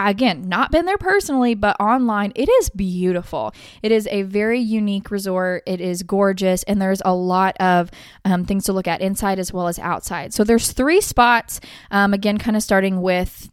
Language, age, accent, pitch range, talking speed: English, 20-39, American, 185-220 Hz, 195 wpm